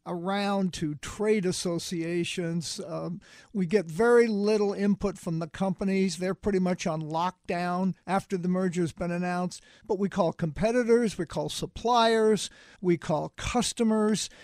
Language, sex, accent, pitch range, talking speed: English, male, American, 180-215 Hz, 135 wpm